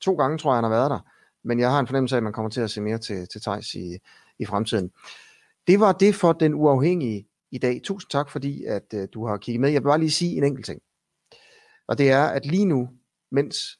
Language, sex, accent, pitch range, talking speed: Danish, male, native, 115-155 Hz, 255 wpm